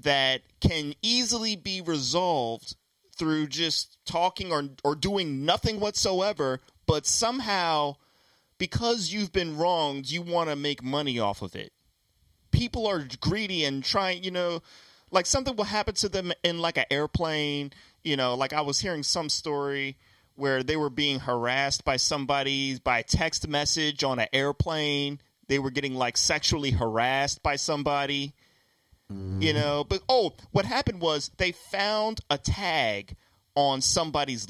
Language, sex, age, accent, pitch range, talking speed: English, male, 30-49, American, 125-170 Hz, 150 wpm